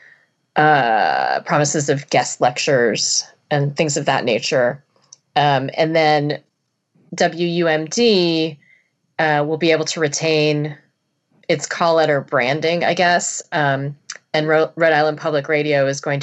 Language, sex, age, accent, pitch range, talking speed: English, female, 30-49, American, 145-165 Hz, 125 wpm